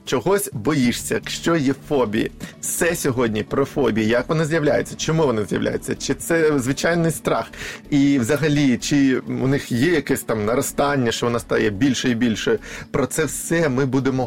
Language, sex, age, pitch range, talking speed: Ukrainian, male, 30-49, 120-165 Hz, 165 wpm